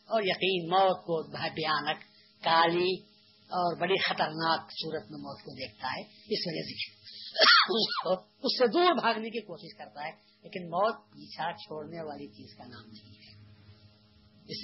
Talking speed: 150 wpm